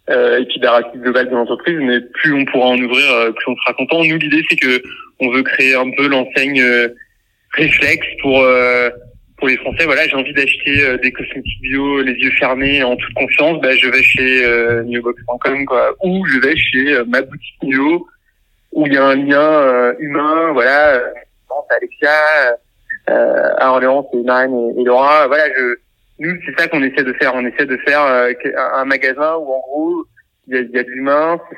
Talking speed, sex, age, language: 205 wpm, male, 30-49, French